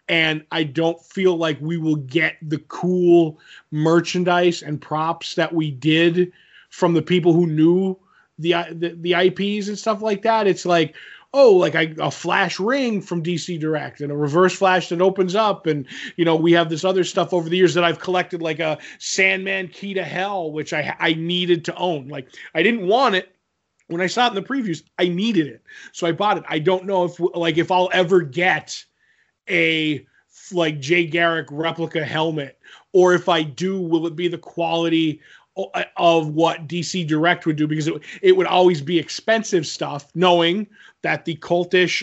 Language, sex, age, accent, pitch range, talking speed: English, male, 20-39, American, 165-190 Hz, 190 wpm